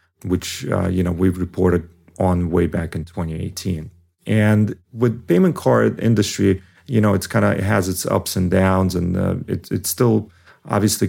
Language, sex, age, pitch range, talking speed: English, male, 30-49, 90-105 Hz, 180 wpm